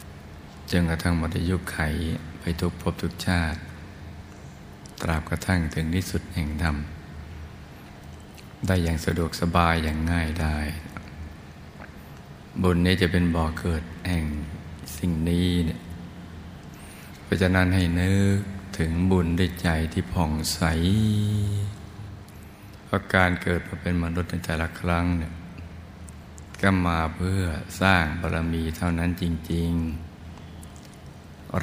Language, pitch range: Thai, 80-90 Hz